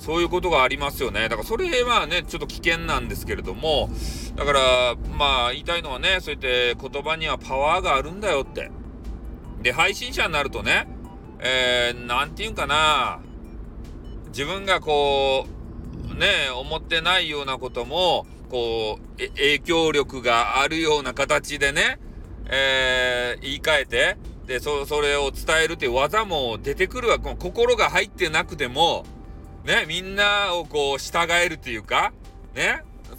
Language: Japanese